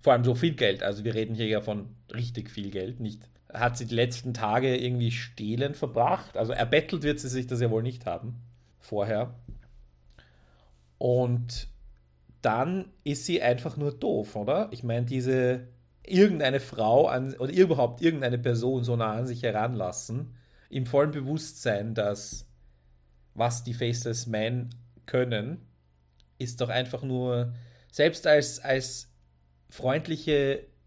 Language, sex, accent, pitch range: German, male, German, 110-130 Hz